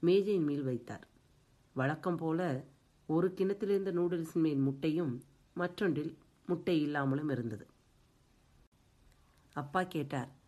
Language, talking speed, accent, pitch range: Tamil, 90 wpm, native, 130-170 Hz